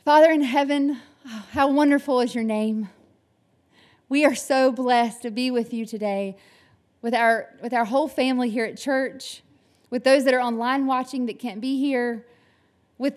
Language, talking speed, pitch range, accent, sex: English, 170 wpm, 230-265 Hz, American, female